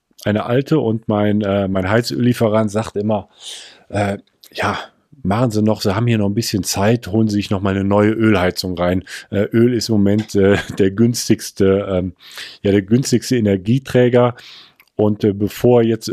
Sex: male